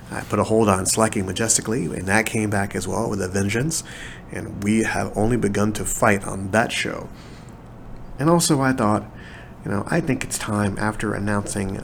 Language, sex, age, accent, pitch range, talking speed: English, male, 30-49, American, 95-115 Hz, 195 wpm